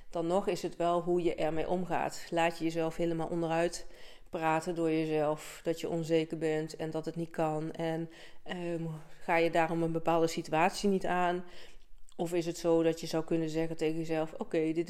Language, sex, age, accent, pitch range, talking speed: Dutch, female, 40-59, Dutch, 160-185 Hz, 200 wpm